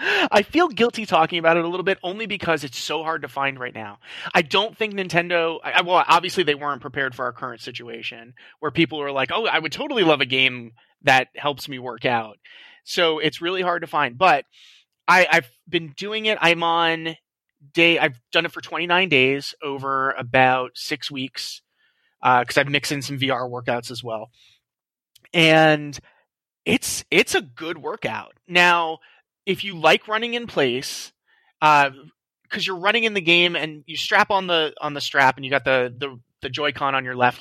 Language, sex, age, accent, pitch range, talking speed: English, male, 30-49, American, 125-170 Hz, 195 wpm